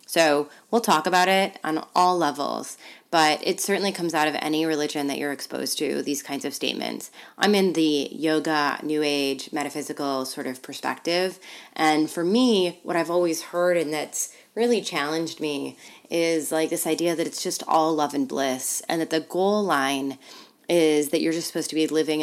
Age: 20-39